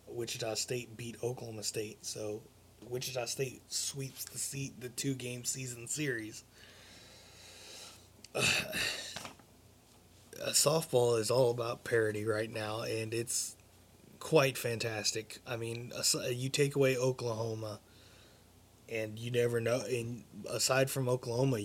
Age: 20-39